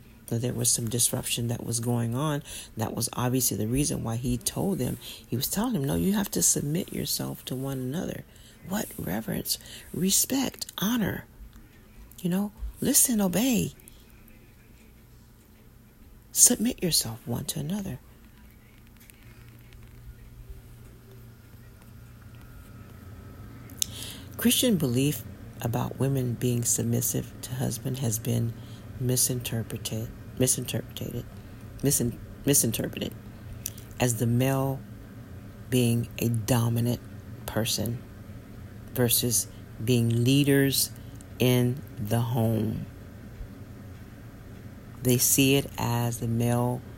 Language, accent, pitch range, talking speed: English, American, 110-130 Hz, 95 wpm